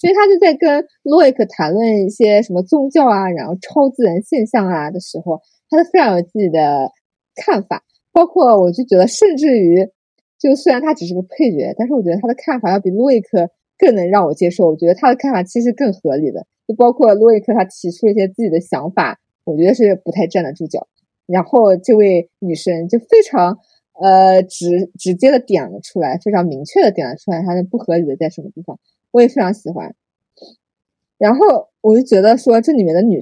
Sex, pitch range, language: female, 180-245 Hz, Chinese